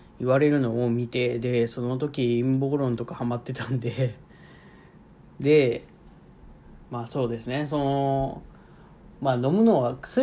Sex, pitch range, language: male, 115-145 Hz, Japanese